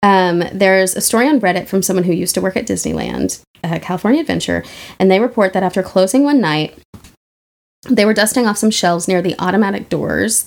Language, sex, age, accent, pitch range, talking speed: English, female, 20-39, American, 180-220 Hz, 200 wpm